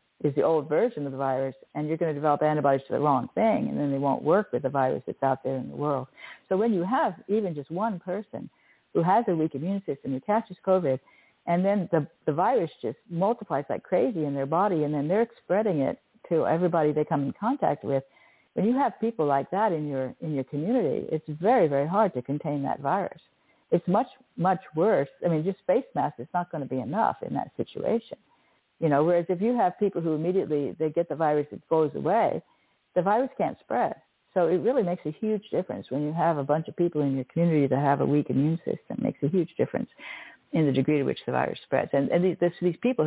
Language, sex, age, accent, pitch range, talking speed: English, female, 60-79, American, 140-185 Hz, 235 wpm